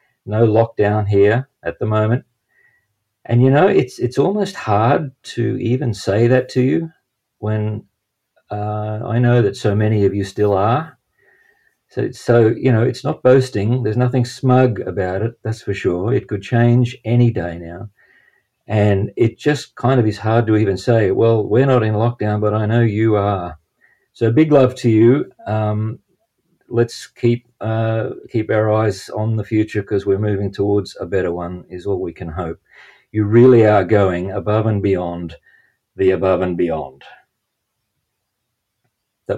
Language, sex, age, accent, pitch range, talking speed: English, male, 50-69, Australian, 100-120 Hz, 170 wpm